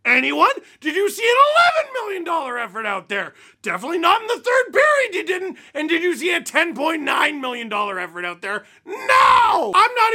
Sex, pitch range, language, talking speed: male, 195-295 Hz, English, 195 wpm